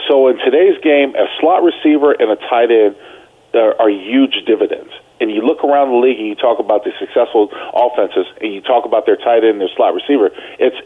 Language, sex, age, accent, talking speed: English, male, 40-59, American, 220 wpm